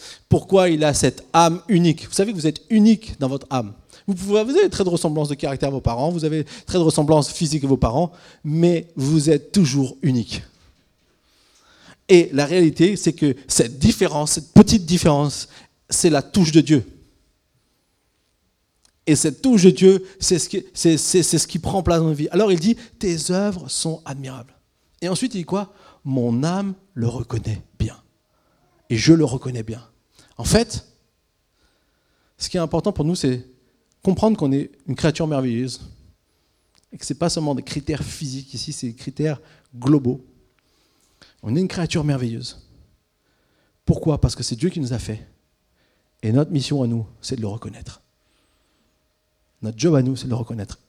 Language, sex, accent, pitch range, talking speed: French, male, French, 120-170 Hz, 180 wpm